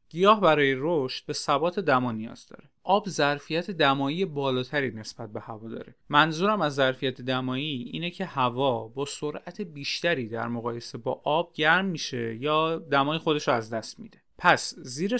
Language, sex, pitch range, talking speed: Persian, male, 125-175 Hz, 160 wpm